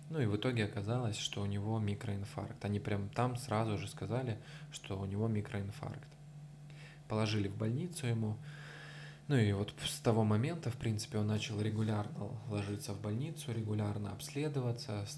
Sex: male